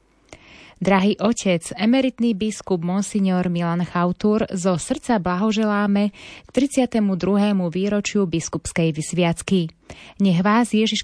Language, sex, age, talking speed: Slovak, female, 20-39, 100 wpm